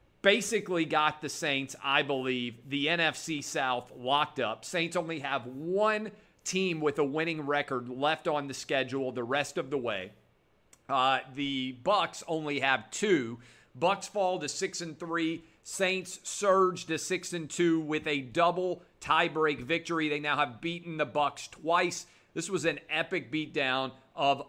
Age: 40-59